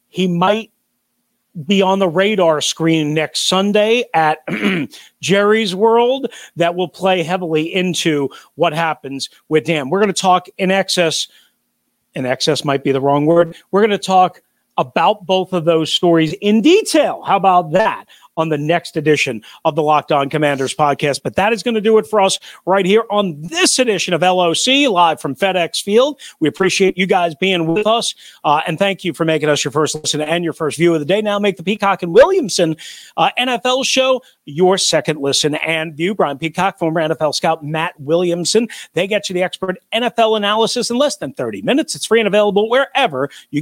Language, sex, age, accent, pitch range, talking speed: English, male, 40-59, American, 160-215 Hz, 195 wpm